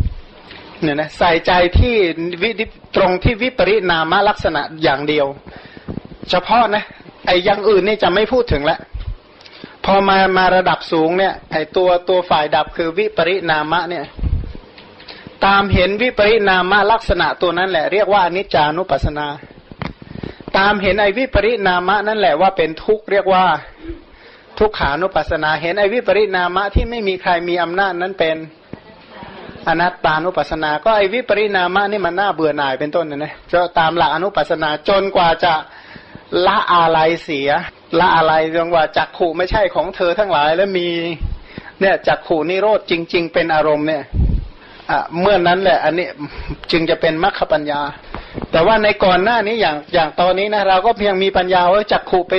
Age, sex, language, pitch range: 30-49, male, Thai, 160-200 Hz